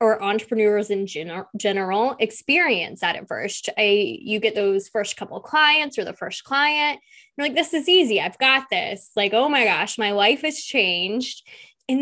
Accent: American